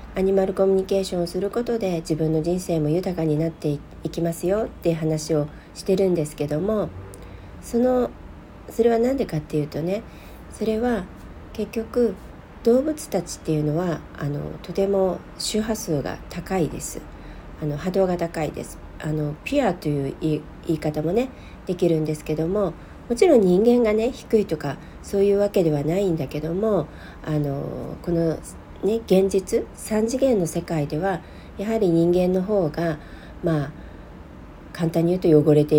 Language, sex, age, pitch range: Japanese, female, 40-59, 155-200 Hz